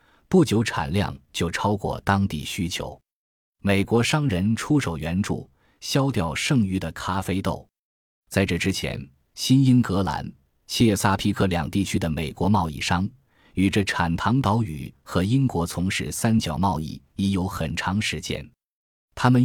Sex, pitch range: male, 85-110 Hz